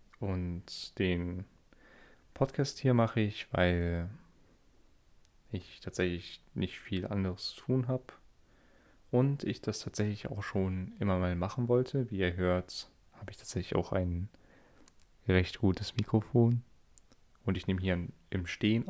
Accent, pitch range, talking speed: German, 90-110 Hz, 135 wpm